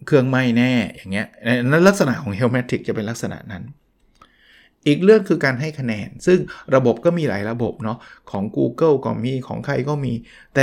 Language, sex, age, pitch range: Thai, male, 20-39, 120-155 Hz